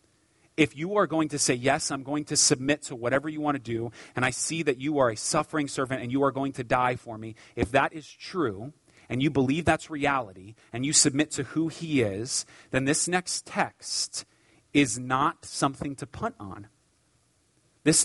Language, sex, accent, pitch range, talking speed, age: English, male, American, 115-145 Hz, 205 wpm, 30-49